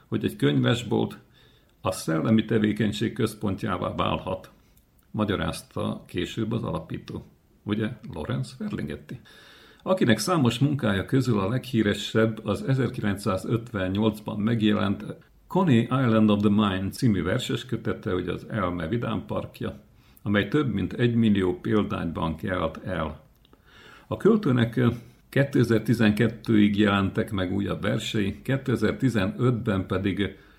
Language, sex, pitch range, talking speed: Hungarian, male, 95-115 Hz, 105 wpm